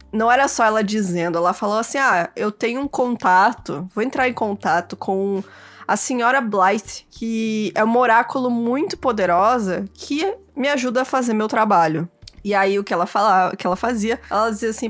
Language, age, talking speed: Portuguese, 20-39, 175 wpm